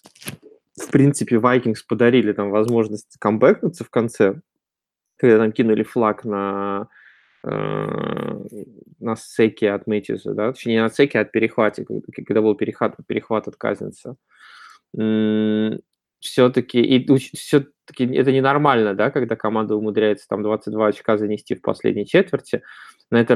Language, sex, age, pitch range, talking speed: Russian, male, 20-39, 105-125 Hz, 130 wpm